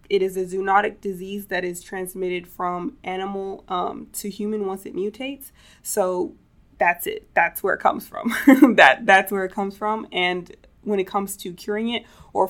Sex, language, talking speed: female, English, 180 wpm